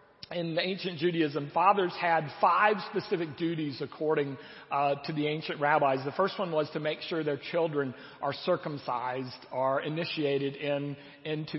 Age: 40-59